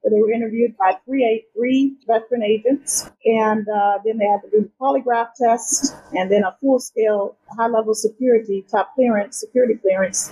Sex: female